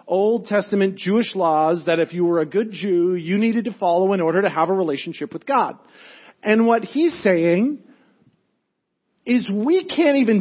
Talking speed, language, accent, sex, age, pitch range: 180 wpm, English, American, male, 40-59, 195-255 Hz